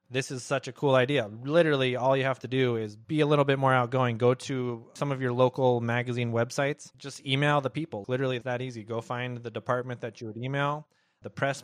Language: English